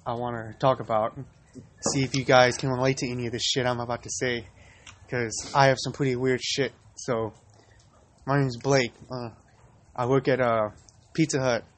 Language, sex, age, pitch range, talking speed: English, male, 20-39, 120-135 Hz, 200 wpm